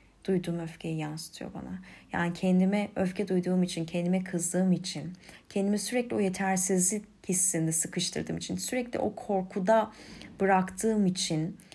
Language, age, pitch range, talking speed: Turkish, 10-29, 175-205 Hz, 125 wpm